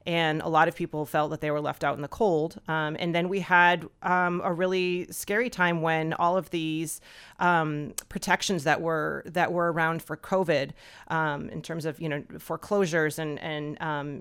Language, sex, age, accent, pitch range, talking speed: English, female, 30-49, American, 150-175 Hz, 200 wpm